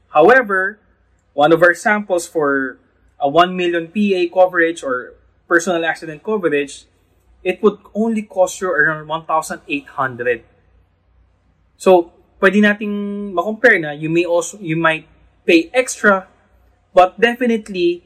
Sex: male